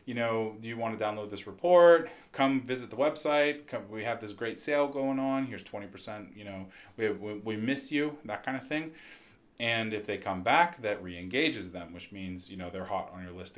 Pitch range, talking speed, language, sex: 100-130 Hz, 220 wpm, English, male